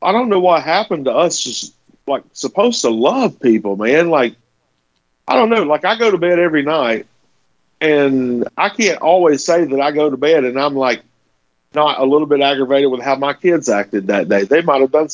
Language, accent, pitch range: English, American, 115-160 Hz